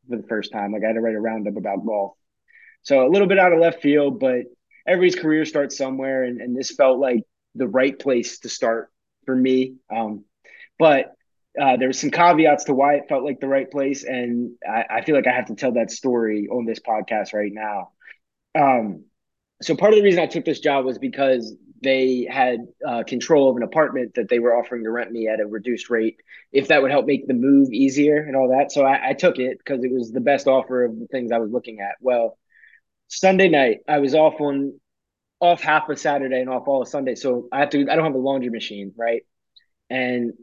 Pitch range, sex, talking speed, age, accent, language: 120-145 Hz, male, 230 wpm, 20-39, American, English